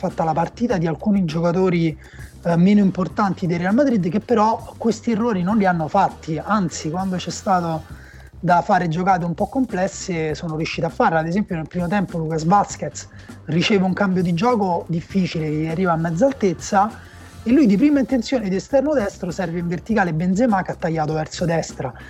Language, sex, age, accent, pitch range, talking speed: Italian, male, 30-49, native, 160-200 Hz, 190 wpm